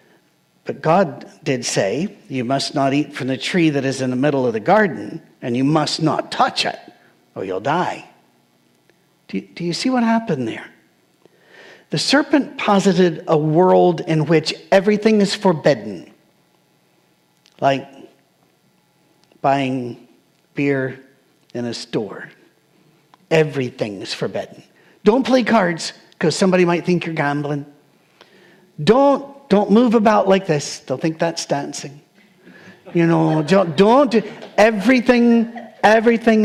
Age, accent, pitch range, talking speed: 50-69, American, 150-215 Hz, 130 wpm